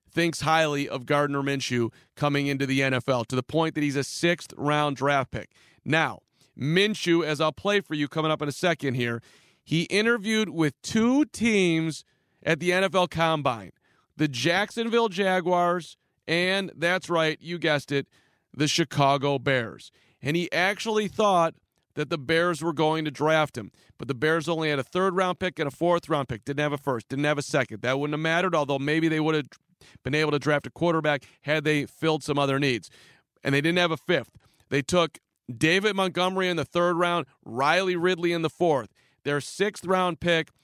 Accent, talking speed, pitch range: American, 190 wpm, 140-175 Hz